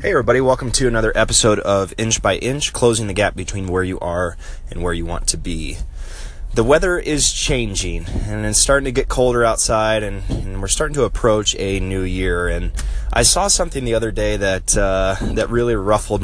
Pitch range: 85-115 Hz